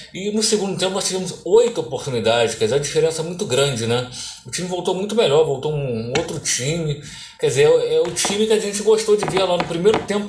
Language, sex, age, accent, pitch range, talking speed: Portuguese, male, 20-39, Brazilian, 130-190 Hz, 245 wpm